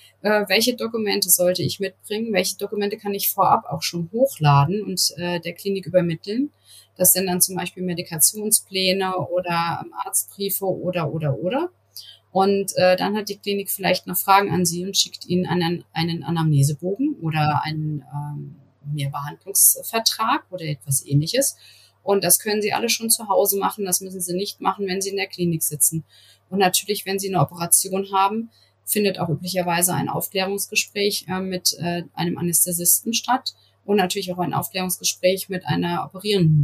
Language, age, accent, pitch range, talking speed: German, 30-49, German, 165-200 Hz, 165 wpm